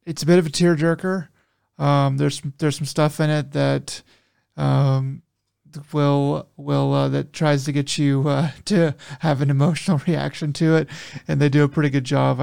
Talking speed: 185 wpm